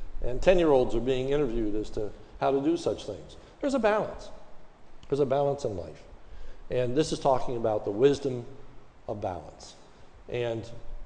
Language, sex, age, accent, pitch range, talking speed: English, male, 60-79, American, 120-170 Hz, 165 wpm